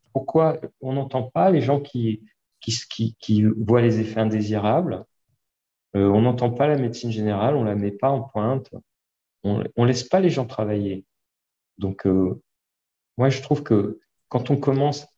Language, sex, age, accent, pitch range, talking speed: French, male, 40-59, French, 110-130 Hz, 175 wpm